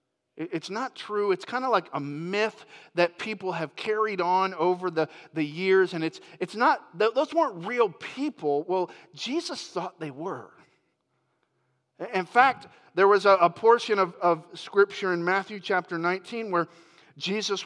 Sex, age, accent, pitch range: male, 40-59, American, 150-200 Hz